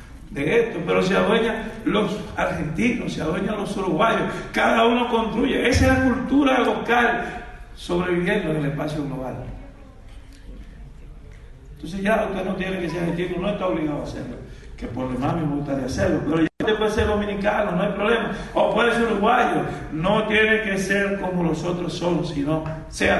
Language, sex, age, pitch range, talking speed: Spanish, male, 60-79, 125-205 Hz, 170 wpm